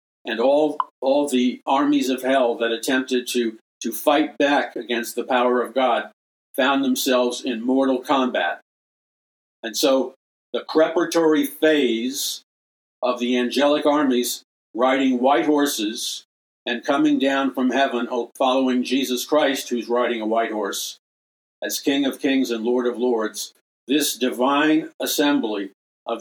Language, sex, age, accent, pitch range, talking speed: English, male, 50-69, American, 120-145 Hz, 135 wpm